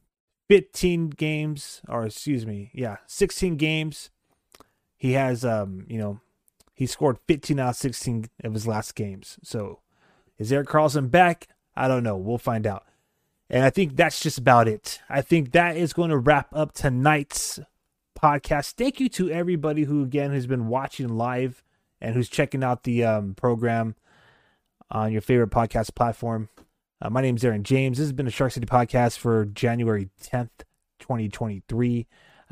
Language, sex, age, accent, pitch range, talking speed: English, male, 20-39, American, 115-145 Hz, 165 wpm